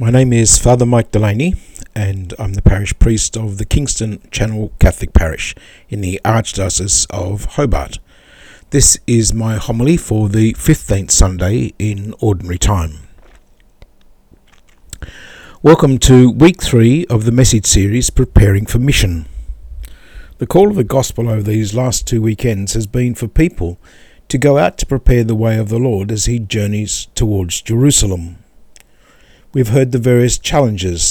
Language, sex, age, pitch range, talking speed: English, male, 50-69, 95-130 Hz, 150 wpm